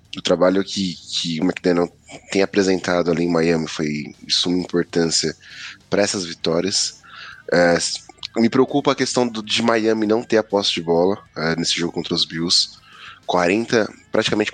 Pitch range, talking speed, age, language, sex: 80-95 Hz, 150 wpm, 10-29, English, male